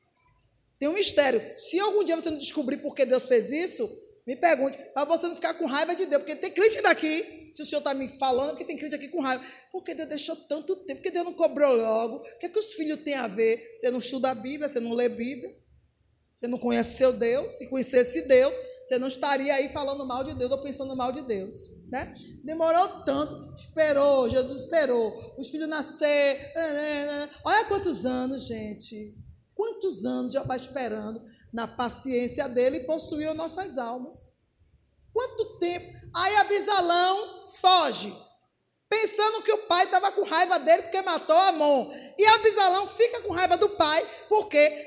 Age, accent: 20-39, Brazilian